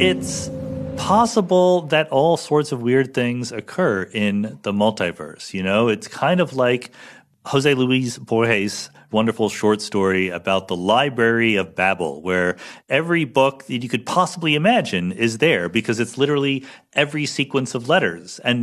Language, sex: English, male